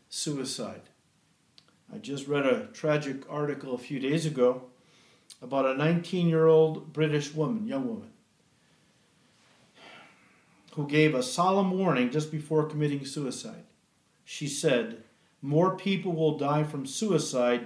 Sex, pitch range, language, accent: male, 145-190 Hz, English, American